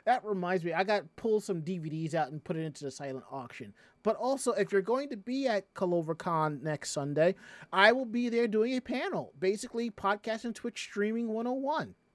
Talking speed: 200 wpm